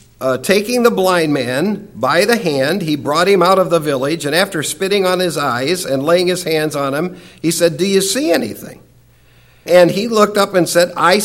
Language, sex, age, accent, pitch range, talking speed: English, male, 60-79, American, 160-220 Hz, 215 wpm